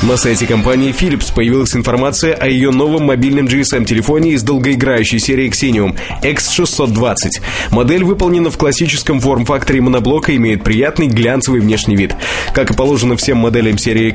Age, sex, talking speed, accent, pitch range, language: 20-39, male, 145 wpm, native, 115-140 Hz, Russian